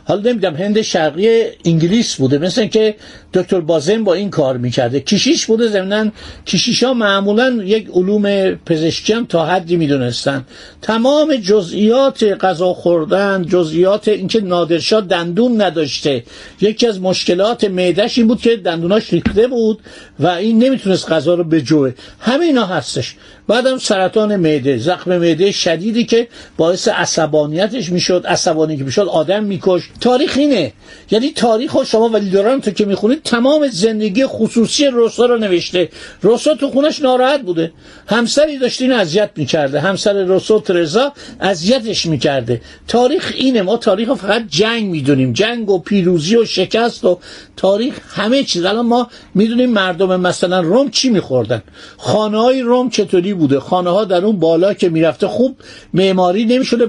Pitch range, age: 175-230 Hz, 50-69